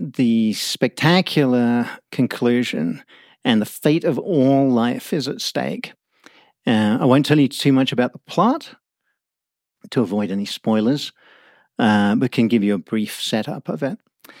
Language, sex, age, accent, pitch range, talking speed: English, male, 50-69, British, 115-145 Hz, 150 wpm